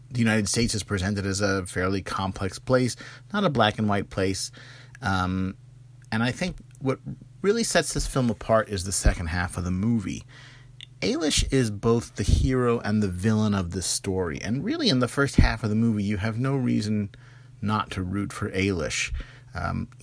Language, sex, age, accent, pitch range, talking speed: English, male, 30-49, American, 95-125 Hz, 190 wpm